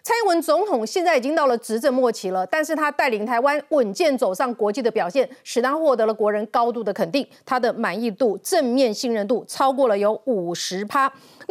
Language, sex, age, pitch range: Chinese, female, 30-49, 220-300 Hz